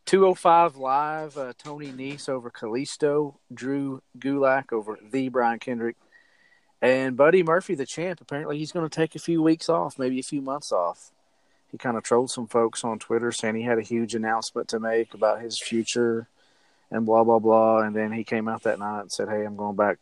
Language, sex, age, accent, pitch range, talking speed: English, male, 40-59, American, 110-145 Hz, 205 wpm